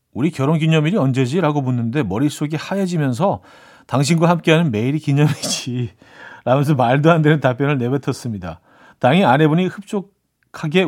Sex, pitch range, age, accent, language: male, 125-155 Hz, 40-59, native, Korean